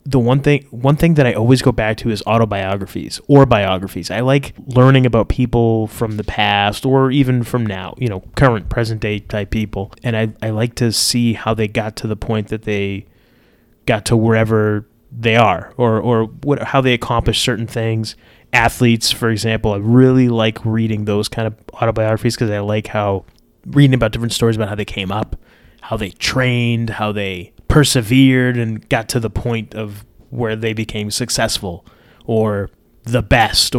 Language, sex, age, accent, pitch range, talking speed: English, male, 20-39, American, 105-125 Hz, 185 wpm